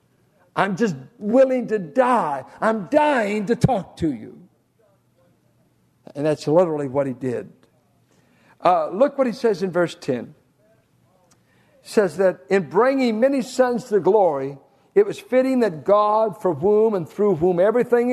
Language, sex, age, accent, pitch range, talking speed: English, male, 60-79, American, 175-240 Hz, 150 wpm